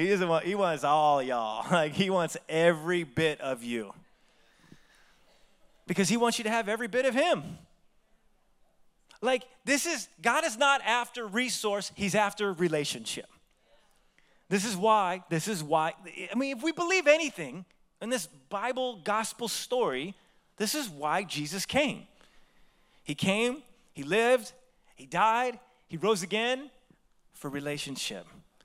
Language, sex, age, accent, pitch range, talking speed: English, male, 30-49, American, 170-245 Hz, 140 wpm